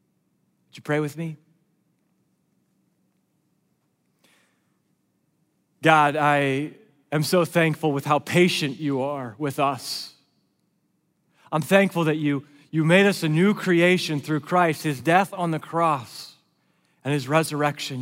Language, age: English, 30-49